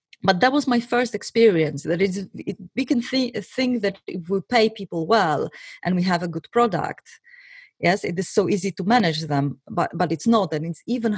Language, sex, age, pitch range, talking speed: English, female, 30-49, 165-225 Hz, 215 wpm